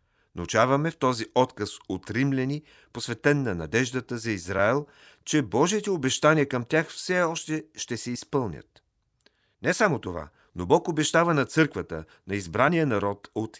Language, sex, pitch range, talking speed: Bulgarian, male, 110-145 Hz, 145 wpm